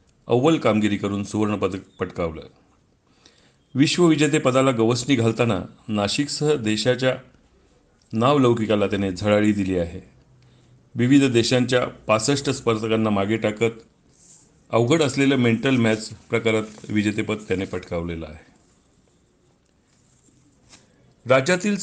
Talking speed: 90 wpm